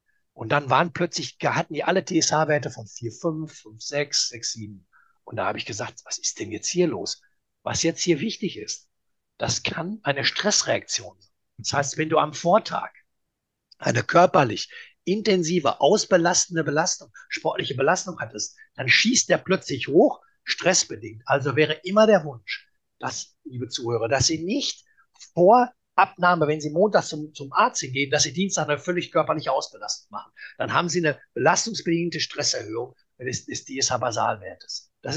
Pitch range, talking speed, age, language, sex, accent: 145-185 Hz, 160 wpm, 60-79, German, male, German